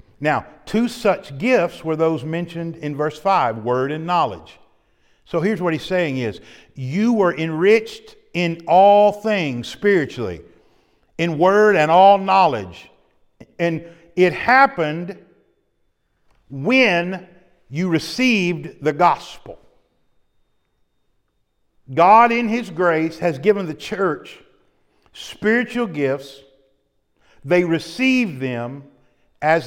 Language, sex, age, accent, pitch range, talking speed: English, male, 50-69, American, 125-175 Hz, 105 wpm